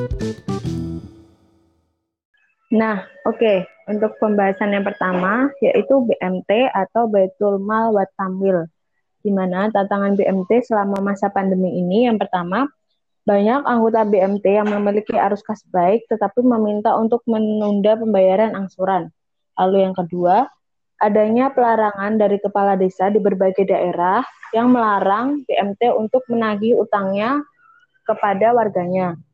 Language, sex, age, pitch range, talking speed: Indonesian, female, 20-39, 190-225 Hz, 110 wpm